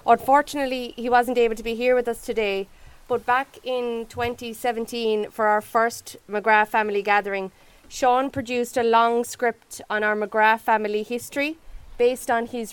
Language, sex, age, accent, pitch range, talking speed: English, female, 30-49, Irish, 220-255 Hz, 155 wpm